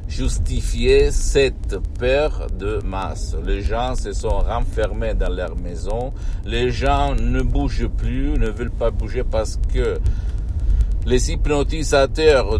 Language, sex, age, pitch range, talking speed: Italian, male, 60-79, 90-125 Hz, 125 wpm